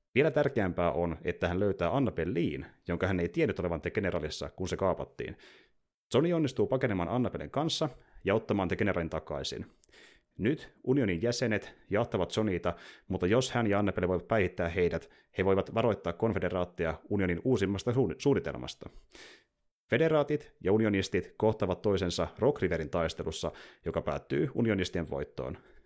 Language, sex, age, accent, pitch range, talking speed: Finnish, male, 30-49, native, 85-115 Hz, 145 wpm